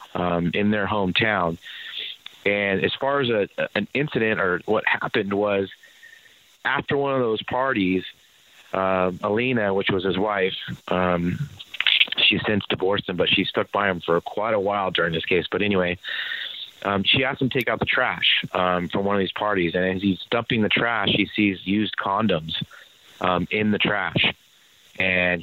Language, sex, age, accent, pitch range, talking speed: English, male, 30-49, American, 95-115 Hz, 175 wpm